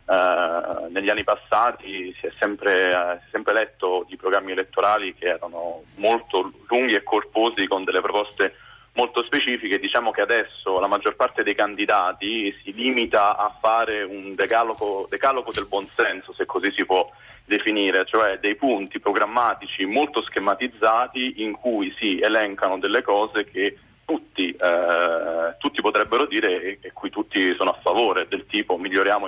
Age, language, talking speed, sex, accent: 30-49, Italian, 145 wpm, male, native